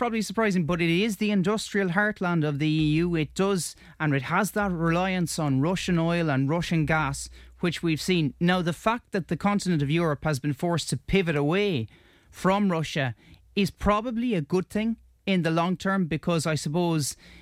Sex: male